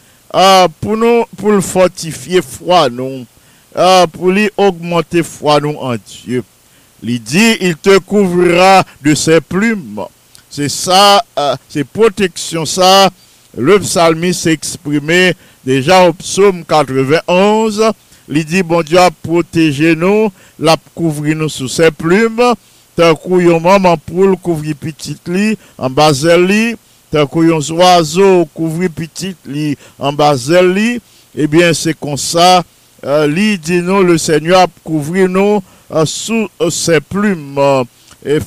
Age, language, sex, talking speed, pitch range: 50-69, English, male, 135 wpm, 150-195 Hz